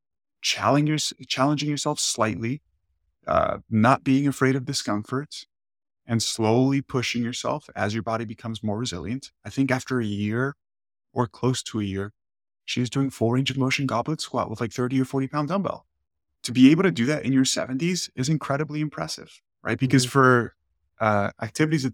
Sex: male